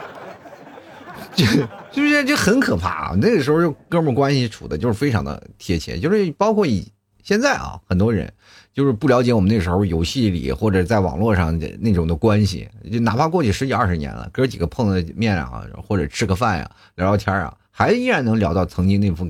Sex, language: male, Chinese